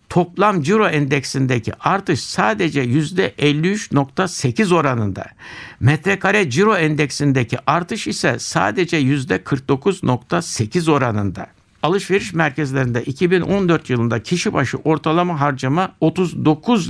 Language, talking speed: Turkish, 85 wpm